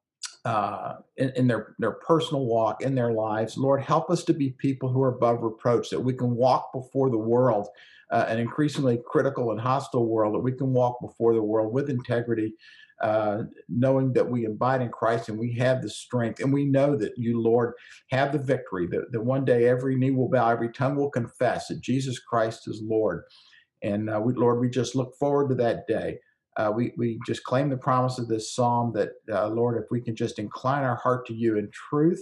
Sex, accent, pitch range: male, American, 115-130 Hz